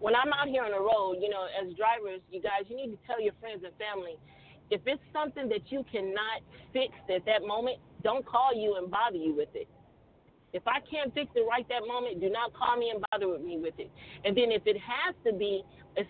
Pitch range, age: 195-235 Hz, 30-49